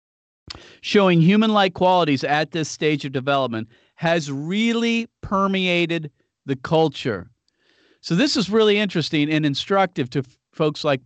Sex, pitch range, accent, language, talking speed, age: male, 130-170 Hz, American, English, 125 wpm, 40-59